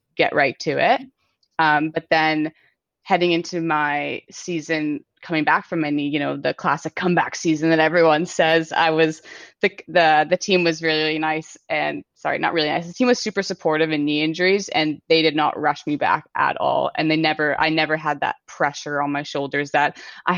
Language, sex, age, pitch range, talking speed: English, female, 20-39, 150-170 Hz, 195 wpm